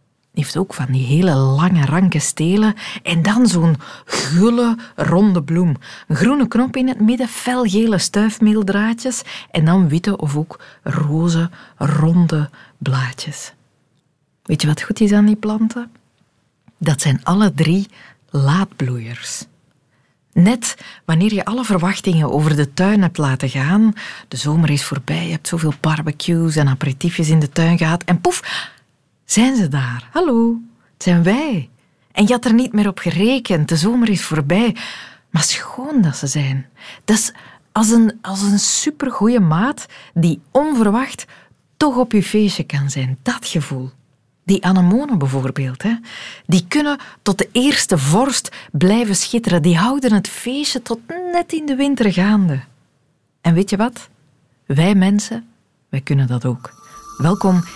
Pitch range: 150-220 Hz